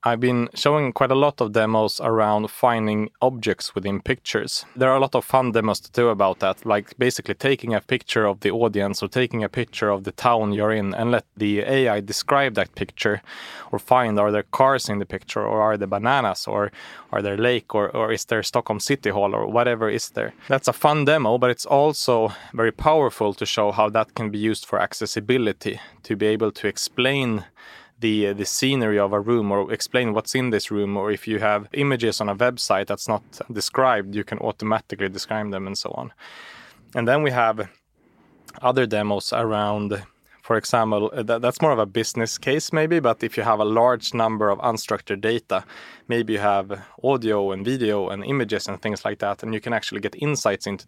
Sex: male